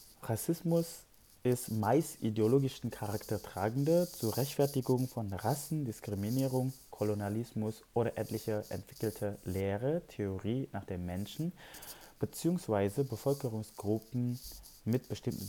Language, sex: German, male